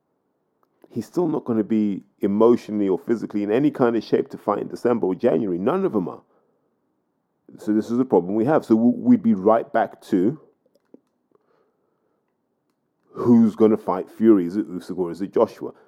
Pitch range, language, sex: 110-140 Hz, English, male